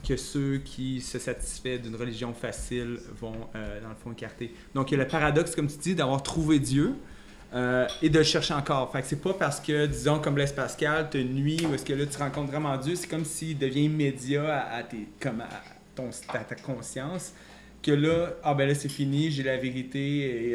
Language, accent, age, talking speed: French, Canadian, 30-49, 215 wpm